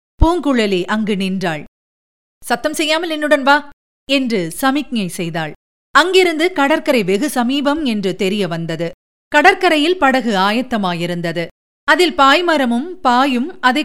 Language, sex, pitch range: Tamil, female, 190-295 Hz